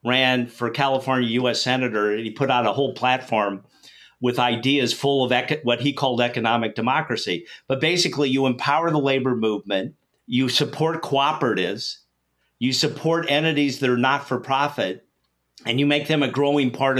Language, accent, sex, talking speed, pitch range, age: English, American, male, 160 wpm, 120-145 Hz, 50-69